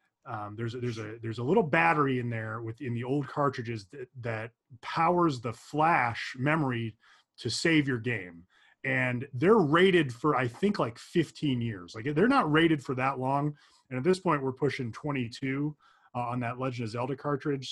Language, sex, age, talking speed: English, male, 30-49, 185 wpm